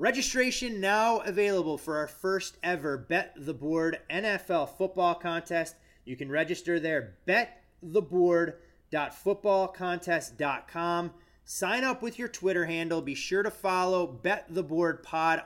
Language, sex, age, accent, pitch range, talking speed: English, male, 30-49, American, 140-180 Hz, 125 wpm